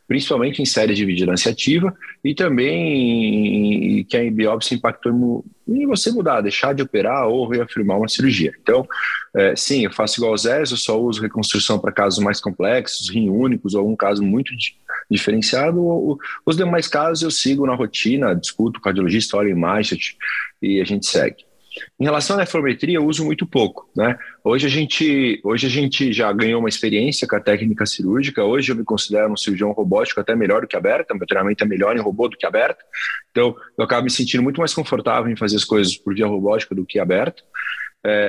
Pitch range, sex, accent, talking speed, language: 105-145 Hz, male, Brazilian, 205 wpm, Portuguese